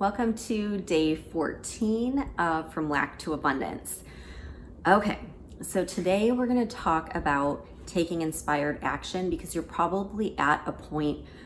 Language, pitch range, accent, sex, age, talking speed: English, 145-175 Hz, American, female, 30-49, 130 wpm